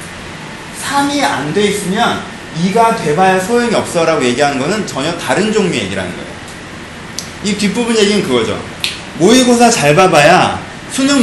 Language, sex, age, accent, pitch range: Korean, male, 30-49, native, 155-220 Hz